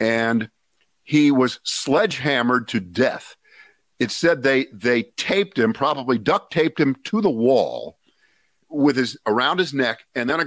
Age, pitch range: 50-69, 100-145 Hz